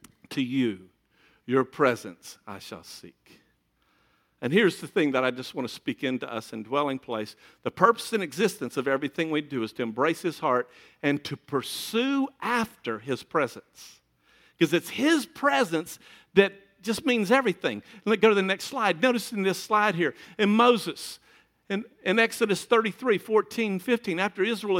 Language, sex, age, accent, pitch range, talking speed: English, male, 50-69, American, 155-230 Hz, 170 wpm